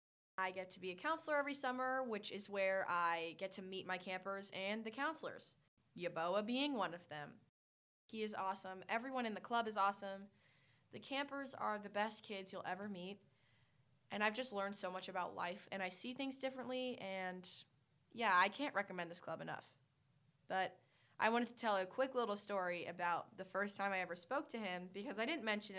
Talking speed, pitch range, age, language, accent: 200 wpm, 170-225 Hz, 20-39, English, American